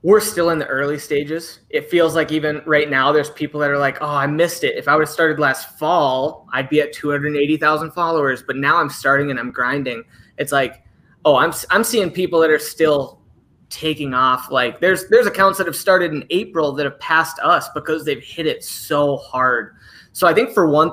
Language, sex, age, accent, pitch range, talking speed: English, male, 20-39, American, 140-170 Hz, 220 wpm